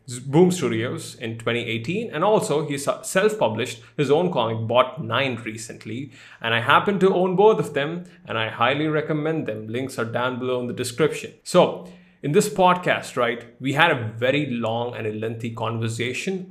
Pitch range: 120-155 Hz